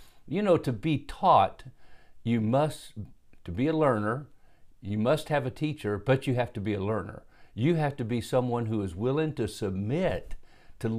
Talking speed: 185 wpm